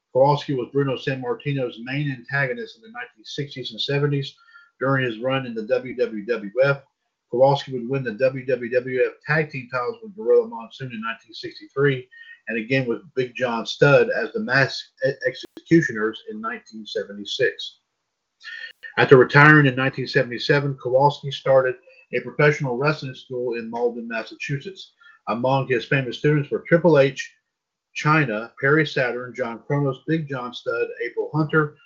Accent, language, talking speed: American, English, 140 wpm